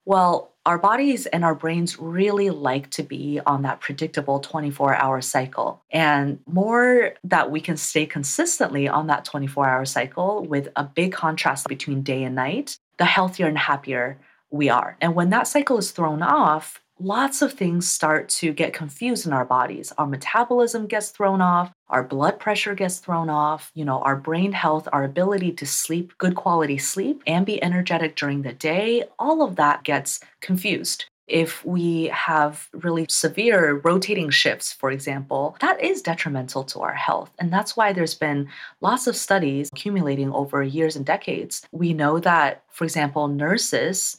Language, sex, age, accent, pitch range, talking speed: English, female, 30-49, American, 140-180 Hz, 170 wpm